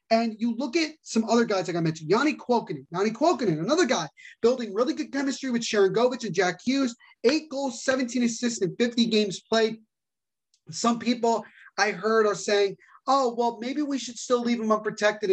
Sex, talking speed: male, 190 wpm